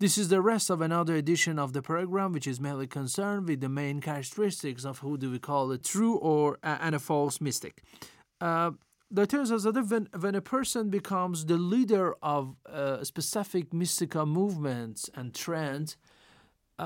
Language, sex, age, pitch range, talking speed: Persian, male, 40-59, 140-190 Hz, 180 wpm